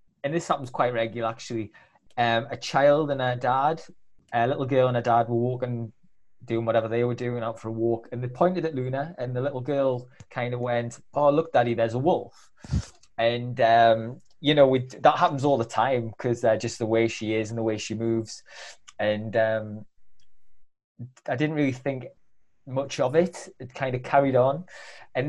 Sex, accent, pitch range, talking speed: male, British, 115-140 Hz, 195 wpm